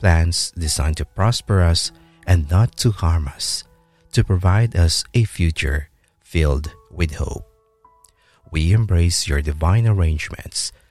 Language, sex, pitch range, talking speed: English, male, 80-100 Hz, 125 wpm